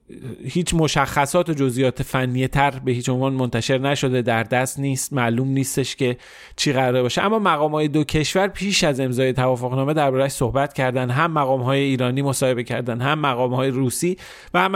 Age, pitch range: 40-59, 125-160 Hz